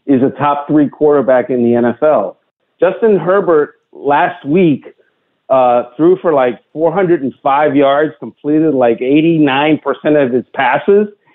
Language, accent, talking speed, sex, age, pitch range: English, American, 125 wpm, male, 50-69, 160-260 Hz